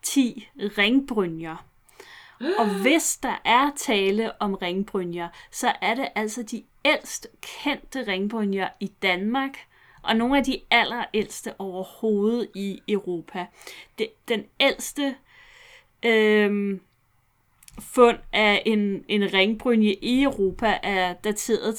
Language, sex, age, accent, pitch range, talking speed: Danish, female, 30-49, native, 185-225 Hz, 105 wpm